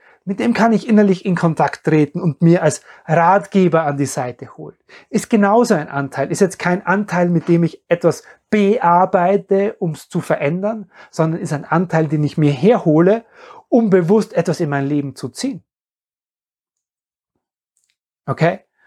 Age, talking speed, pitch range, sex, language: 30-49, 160 wpm, 150-195 Hz, male, German